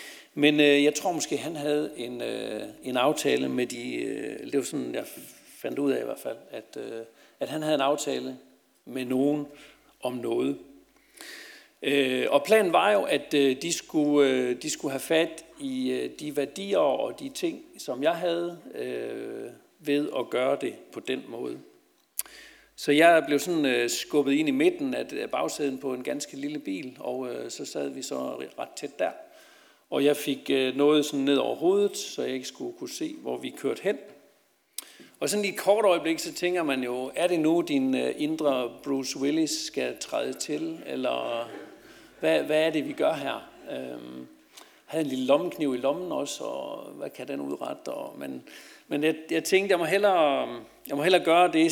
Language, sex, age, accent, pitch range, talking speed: Danish, male, 60-79, native, 135-205 Hz, 175 wpm